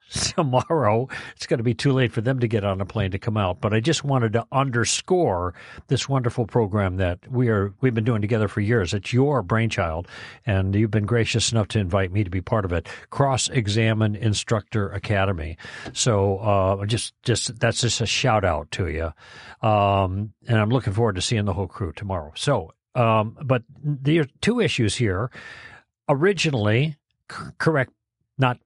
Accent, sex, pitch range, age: American, male, 105-135 Hz, 50-69